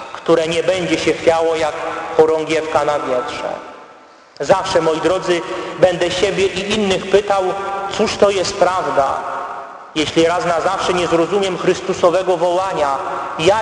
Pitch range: 160-195 Hz